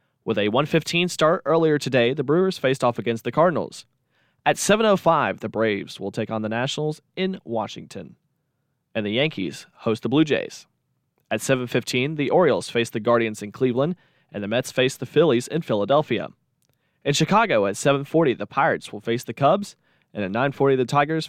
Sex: male